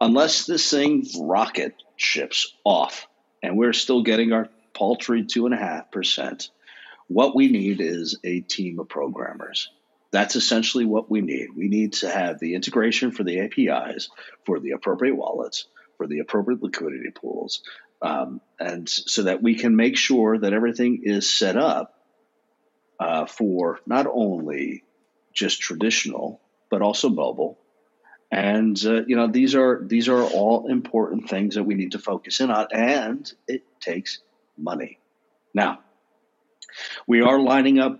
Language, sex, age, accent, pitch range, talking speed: English, male, 50-69, American, 105-125 Hz, 145 wpm